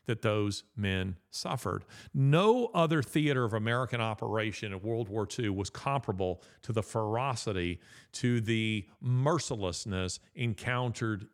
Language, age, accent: English, 40-59, American